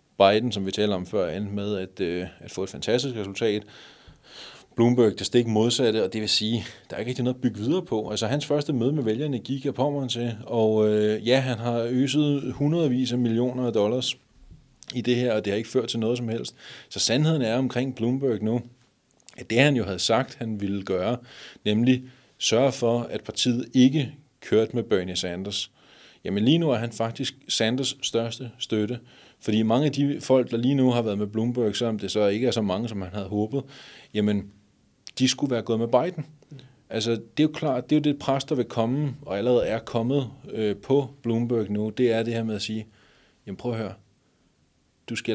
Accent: native